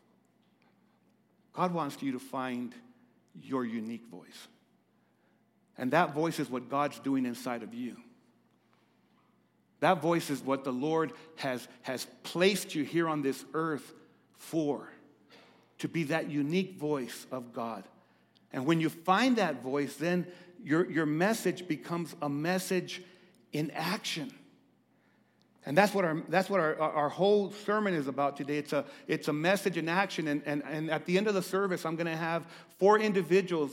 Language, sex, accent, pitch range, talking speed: English, male, American, 145-185 Hz, 160 wpm